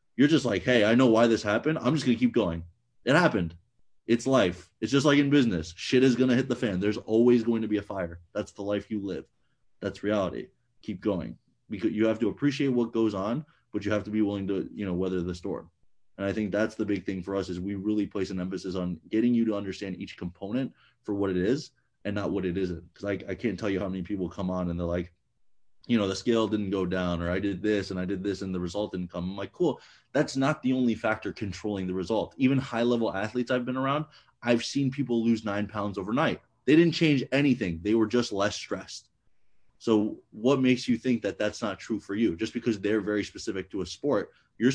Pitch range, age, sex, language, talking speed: 95-120 Hz, 30-49, male, English, 245 wpm